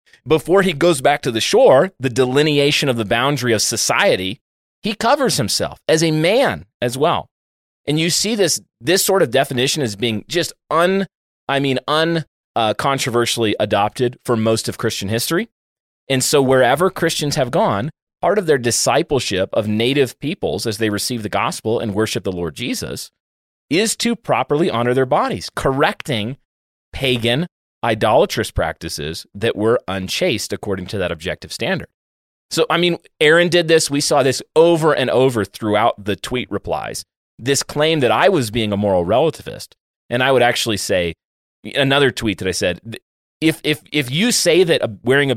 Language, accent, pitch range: English, American, 110-150 Hz